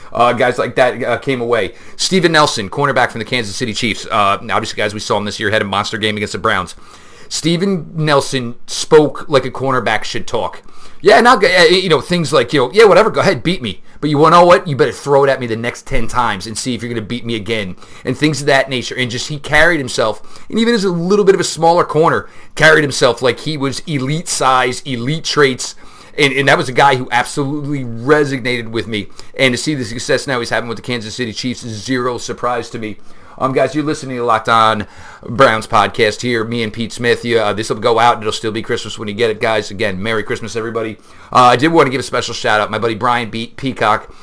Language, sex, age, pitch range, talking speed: English, male, 30-49, 110-140 Hz, 250 wpm